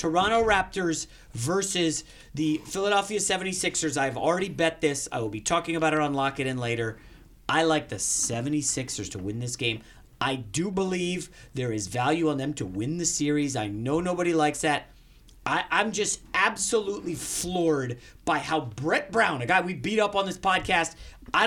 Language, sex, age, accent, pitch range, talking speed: English, male, 40-59, American, 145-200 Hz, 175 wpm